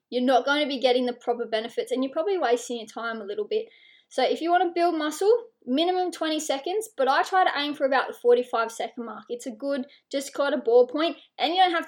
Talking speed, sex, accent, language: 260 wpm, female, Australian, English